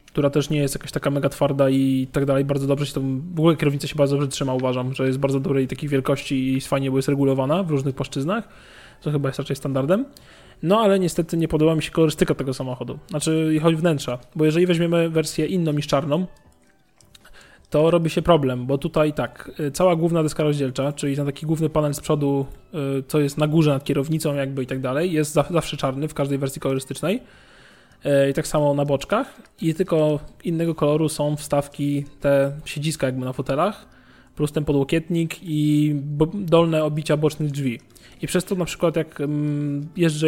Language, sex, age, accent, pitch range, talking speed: Polish, male, 20-39, native, 140-160 Hz, 190 wpm